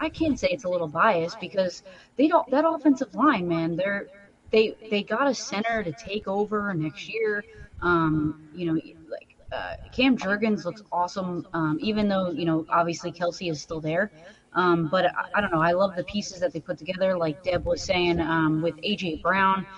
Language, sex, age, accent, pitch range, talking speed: English, female, 30-49, American, 170-205 Hz, 200 wpm